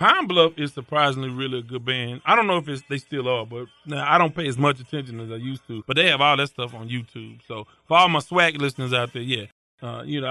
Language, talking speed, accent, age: English, 280 wpm, American, 20-39